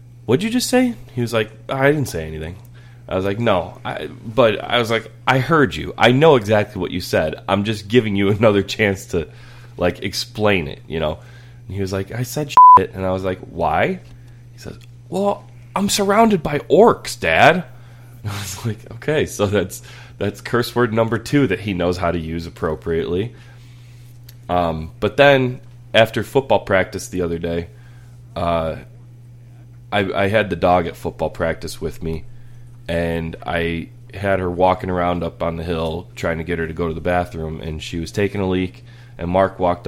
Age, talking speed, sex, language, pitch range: 20-39, 195 wpm, male, English, 90-120 Hz